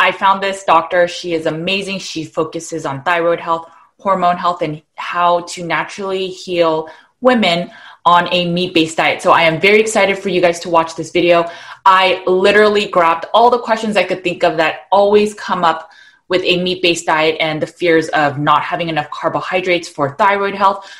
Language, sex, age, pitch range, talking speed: English, female, 20-39, 165-195 Hz, 185 wpm